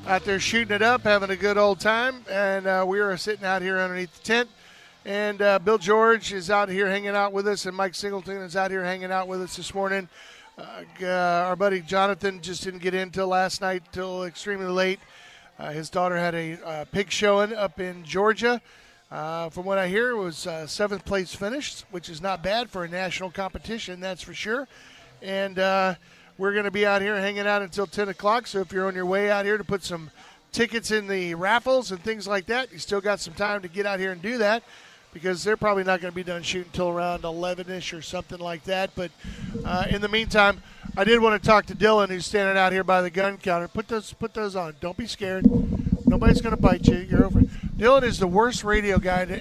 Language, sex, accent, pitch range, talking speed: English, male, American, 185-210 Hz, 230 wpm